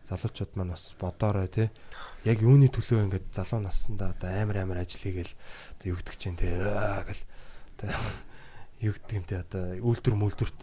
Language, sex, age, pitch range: Korean, male, 20-39, 95-115 Hz